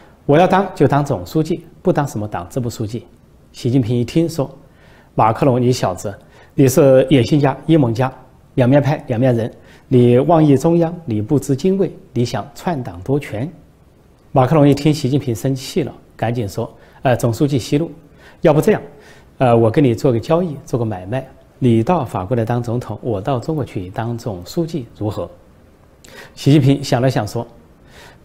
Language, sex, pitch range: Chinese, male, 115-145 Hz